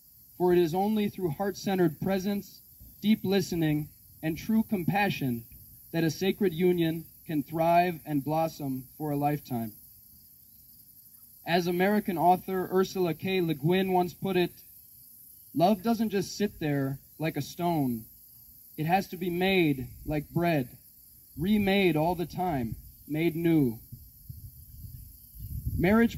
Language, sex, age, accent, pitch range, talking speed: English, male, 20-39, American, 130-185 Hz, 125 wpm